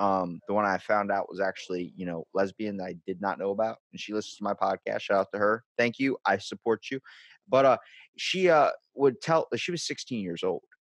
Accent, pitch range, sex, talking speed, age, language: American, 100-155 Hz, male, 235 wpm, 30-49, English